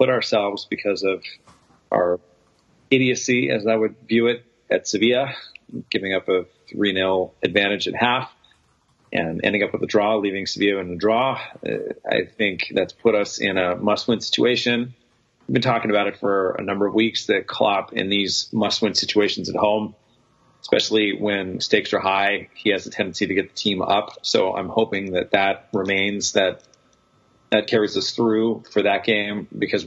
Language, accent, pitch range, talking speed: English, American, 95-115 Hz, 175 wpm